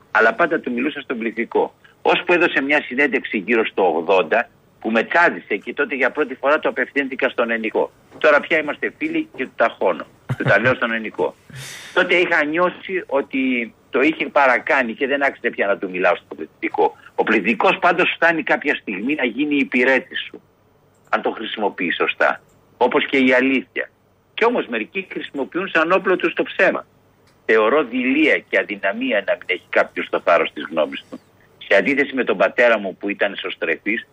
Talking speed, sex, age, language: 170 wpm, male, 60-79, Greek